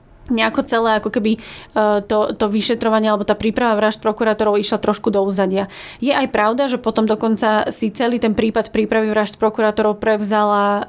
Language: Slovak